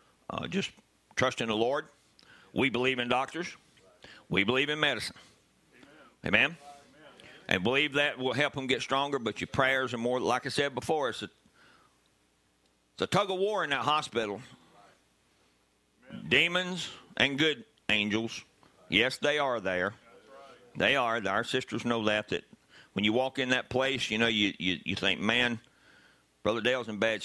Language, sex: English, male